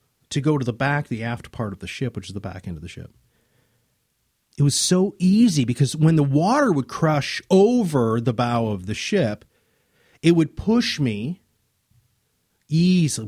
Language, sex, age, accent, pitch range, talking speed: English, male, 40-59, American, 115-160 Hz, 180 wpm